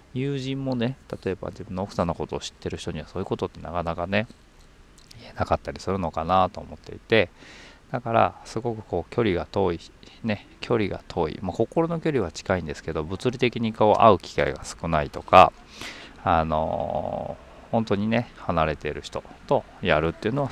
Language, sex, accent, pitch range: Japanese, male, native, 80-120 Hz